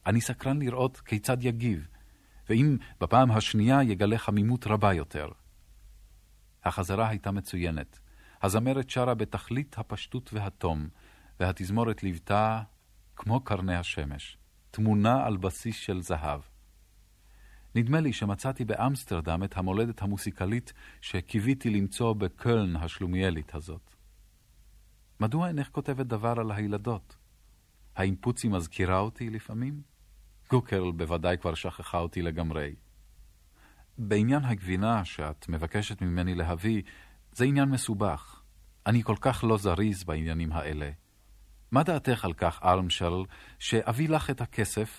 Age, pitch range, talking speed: 40-59, 85-115 Hz, 110 wpm